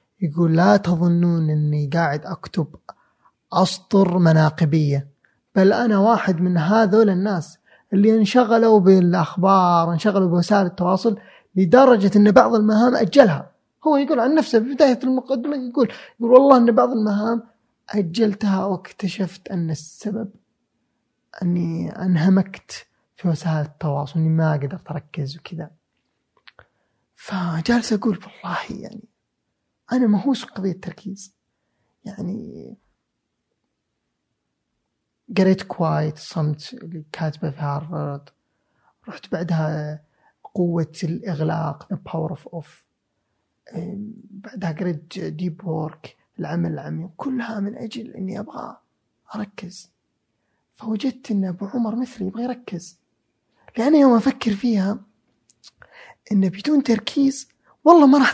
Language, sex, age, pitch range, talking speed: Arabic, male, 20-39, 165-225 Hz, 105 wpm